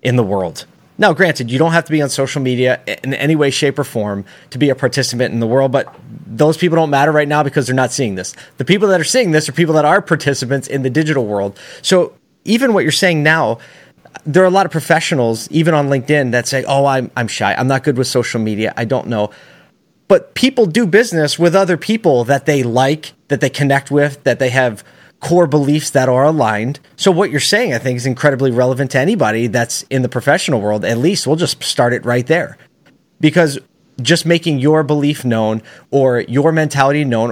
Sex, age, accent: male, 30-49, American